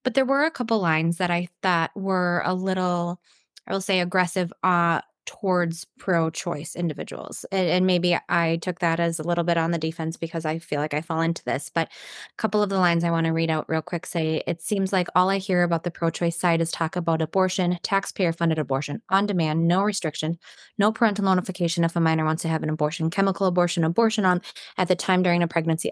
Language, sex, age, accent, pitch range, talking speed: English, female, 20-39, American, 165-190 Hz, 220 wpm